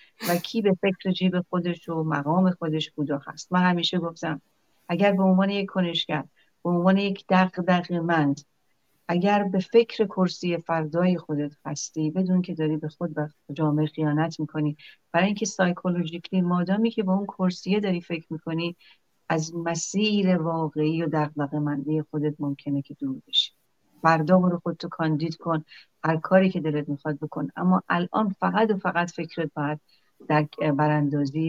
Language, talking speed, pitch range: Persian, 150 wpm, 155-180 Hz